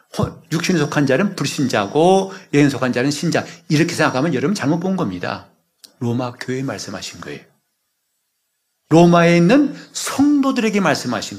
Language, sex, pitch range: Korean, male, 125-180 Hz